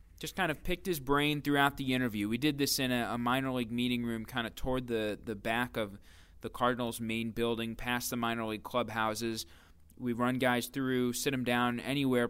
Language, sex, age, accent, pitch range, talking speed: English, male, 20-39, American, 110-130 Hz, 205 wpm